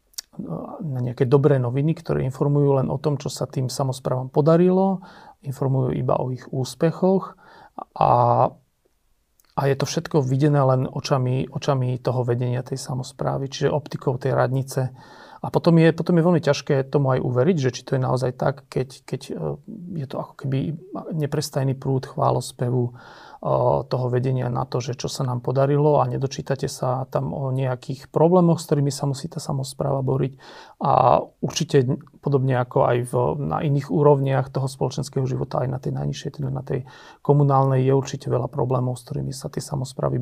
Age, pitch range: 40-59, 130-145 Hz